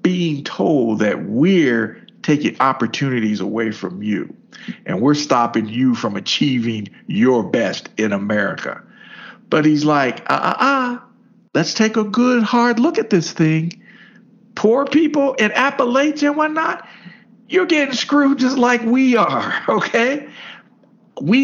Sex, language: male, English